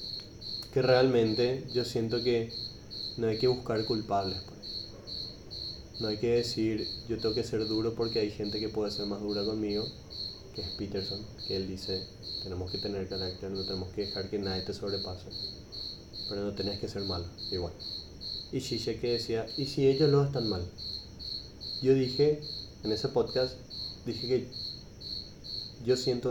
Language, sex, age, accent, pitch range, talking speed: Spanish, male, 20-39, Argentinian, 100-125 Hz, 165 wpm